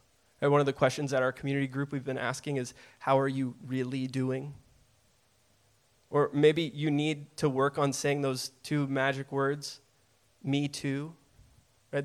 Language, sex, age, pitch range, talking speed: English, male, 20-39, 130-170 Hz, 165 wpm